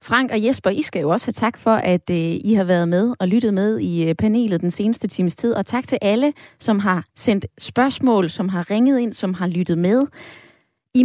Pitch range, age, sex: 190-255 Hz, 20-39, female